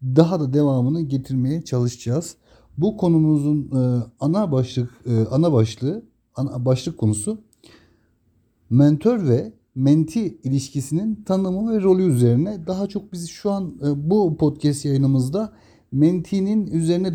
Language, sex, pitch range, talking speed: Turkish, male, 125-185 Hz, 110 wpm